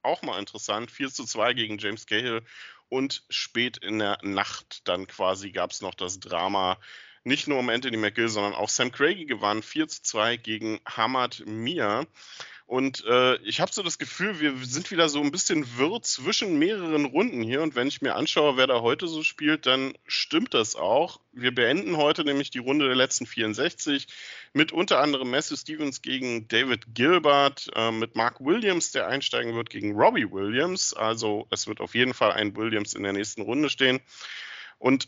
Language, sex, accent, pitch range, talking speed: German, male, German, 115-155 Hz, 190 wpm